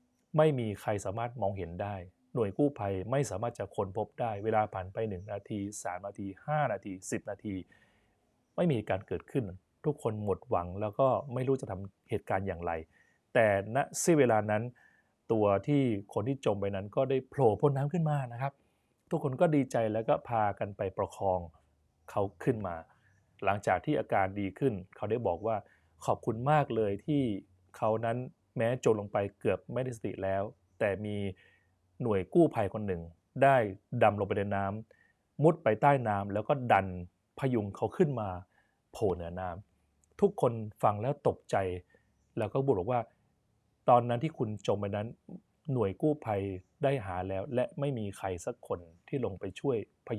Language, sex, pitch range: Thai, male, 95-130 Hz